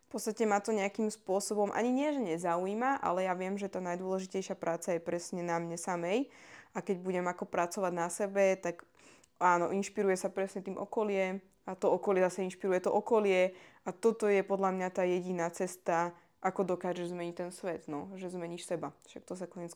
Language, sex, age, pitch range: Slovak, female, 20-39, 175-200 Hz